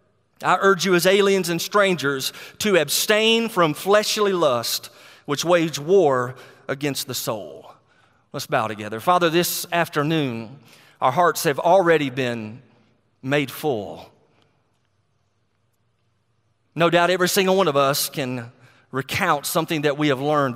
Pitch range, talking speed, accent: 115-180 Hz, 130 wpm, American